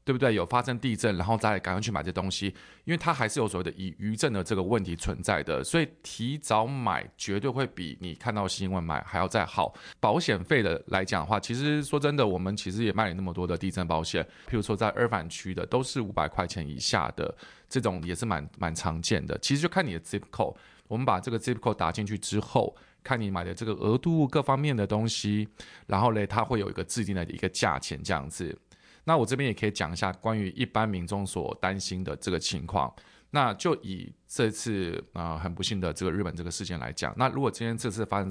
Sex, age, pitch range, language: male, 20-39, 90-115 Hz, Chinese